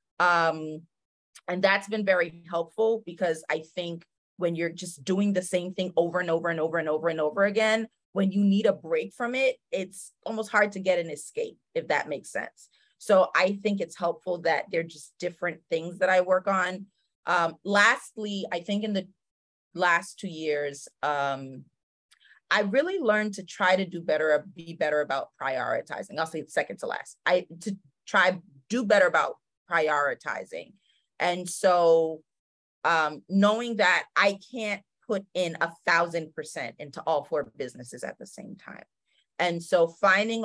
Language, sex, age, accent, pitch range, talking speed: English, female, 30-49, American, 165-200 Hz, 170 wpm